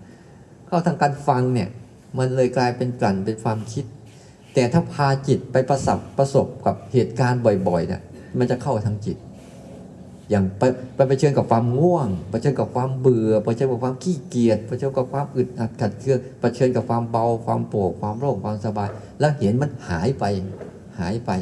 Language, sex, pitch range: Thai, male, 110-140 Hz